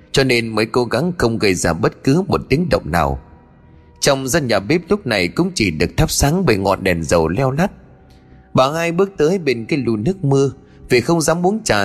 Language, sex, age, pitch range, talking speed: Vietnamese, male, 20-39, 100-165 Hz, 230 wpm